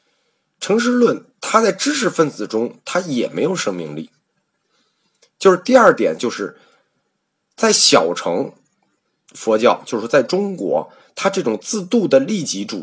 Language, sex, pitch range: Chinese, male, 150-215 Hz